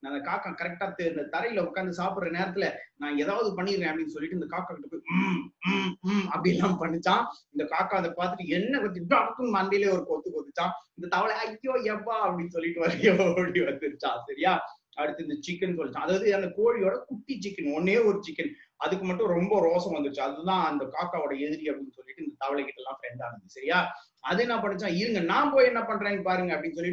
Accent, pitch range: native, 155-215 Hz